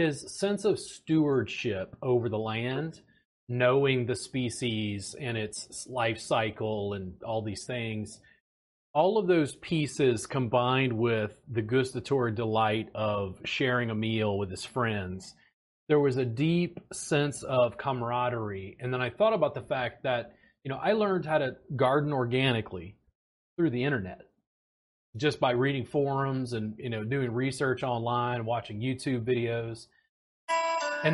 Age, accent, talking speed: 30-49, American, 145 wpm